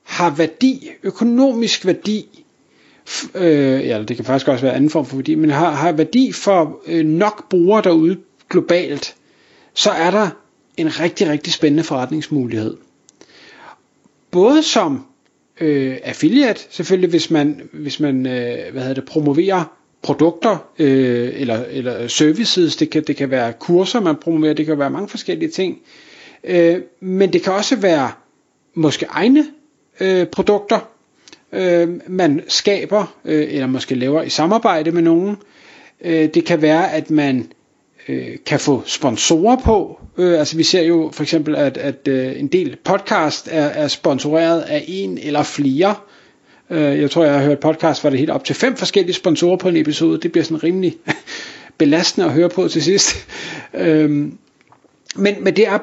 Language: Danish